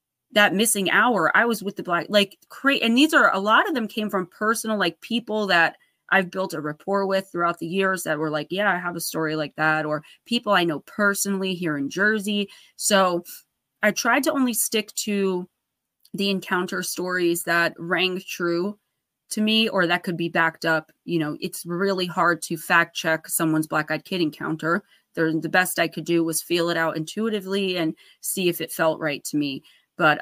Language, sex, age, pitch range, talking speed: English, female, 20-39, 160-195 Hz, 200 wpm